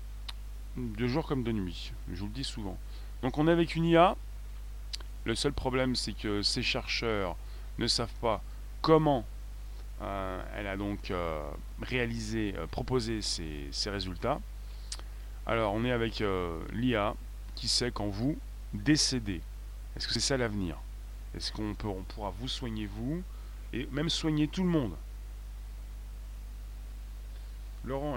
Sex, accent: male, French